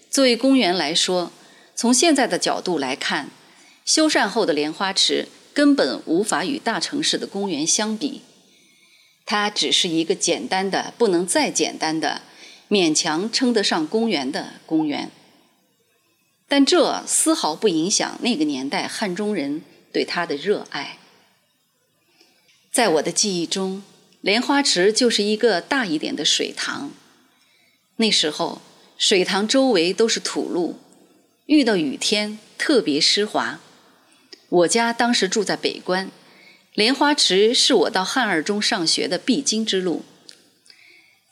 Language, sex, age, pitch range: Chinese, female, 30-49, 190-285 Hz